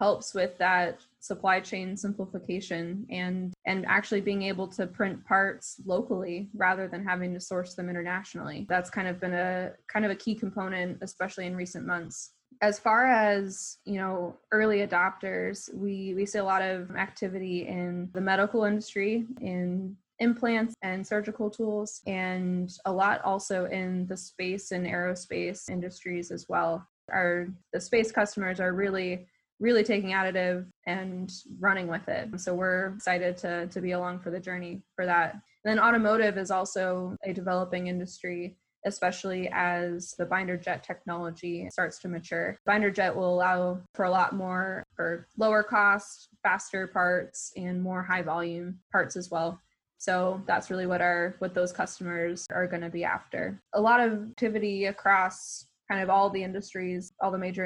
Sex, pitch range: female, 180-200 Hz